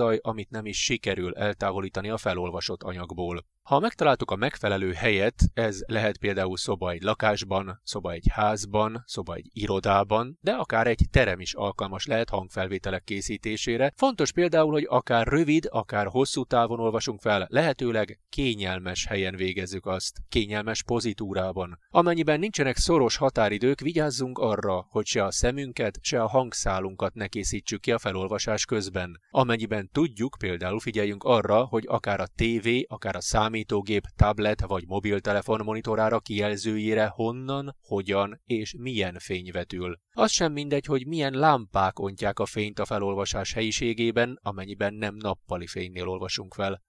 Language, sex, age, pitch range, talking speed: Hungarian, male, 30-49, 100-120 Hz, 140 wpm